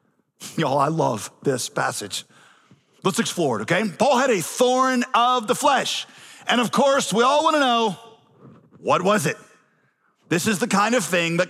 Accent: American